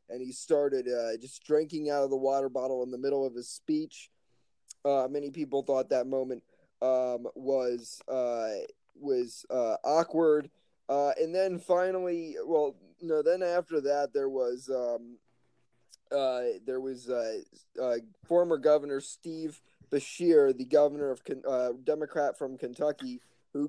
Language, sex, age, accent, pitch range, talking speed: English, male, 20-39, American, 125-155 Hz, 145 wpm